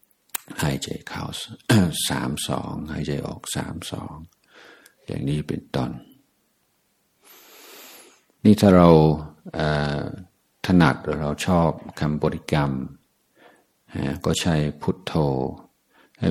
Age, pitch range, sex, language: 60-79, 75-85 Hz, male, Thai